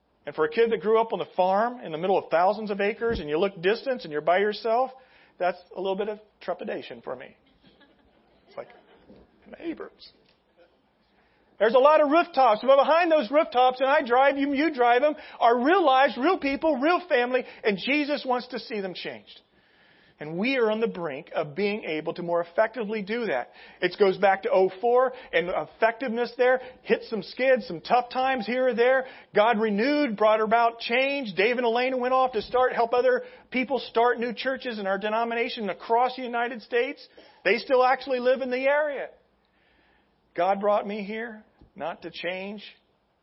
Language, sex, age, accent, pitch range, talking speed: English, male, 40-59, American, 205-260 Hz, 190 wpm